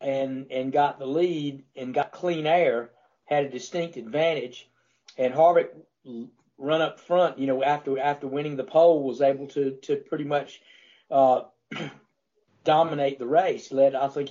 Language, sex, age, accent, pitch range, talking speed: English, male, 50-69, American, 135-165 Hz, 160 wpm